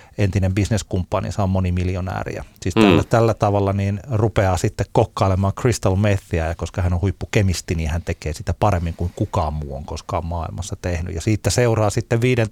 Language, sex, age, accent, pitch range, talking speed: Finnish, male, 30-49, native, 95-115 Hz, 175 wpm